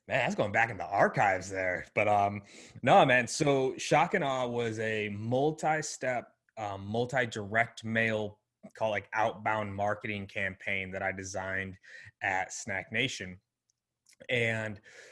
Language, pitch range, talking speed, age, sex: English, 105-130 Hz, 135 wpm, 20-39, male